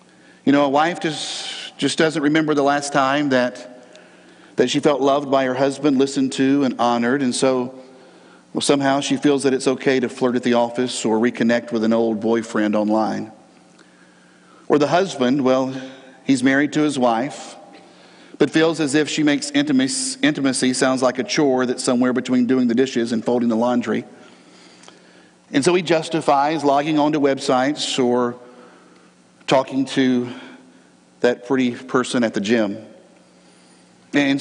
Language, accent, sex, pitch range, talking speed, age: English, American, male, 125-185 Hz, 160 wpm, 50-69